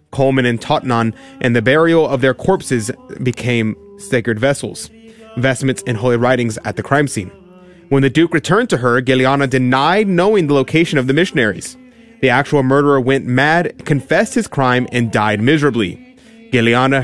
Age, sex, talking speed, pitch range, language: 30-49, male, 160 wpm, 125-165 Hz, English